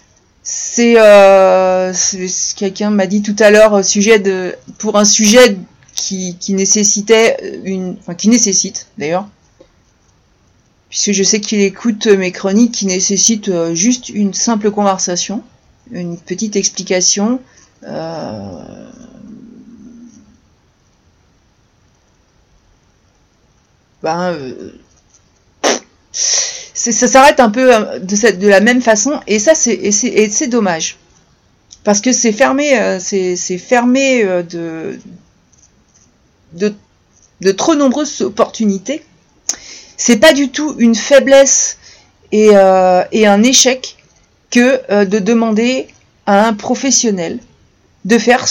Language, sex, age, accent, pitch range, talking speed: French, female, 40-59, French, 195-245 Hz, 115 wpm